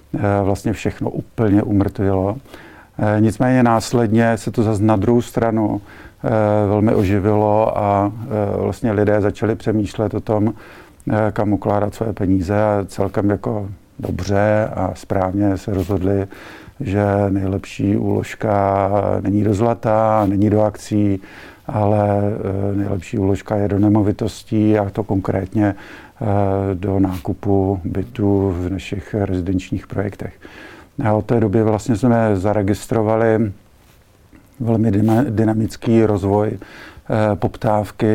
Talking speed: 110 wpm